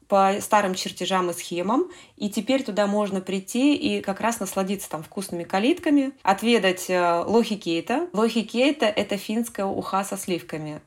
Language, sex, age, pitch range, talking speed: Russian, female, 20-39, 180-225 Hz, 155 wpm